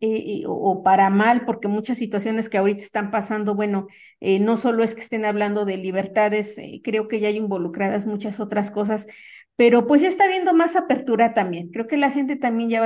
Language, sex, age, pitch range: Spanish, female, 40-59, 210-255 Hz